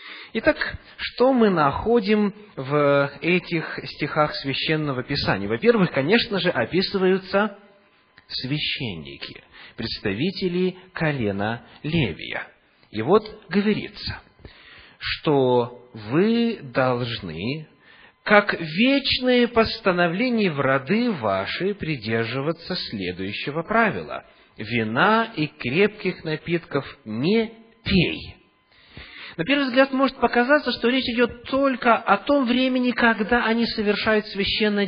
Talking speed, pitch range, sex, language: 95 wpm, 150-215 Hz, male, English